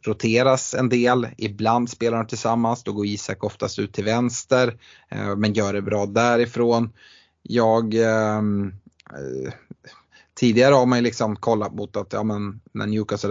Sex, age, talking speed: male, 30-49, 155 wpm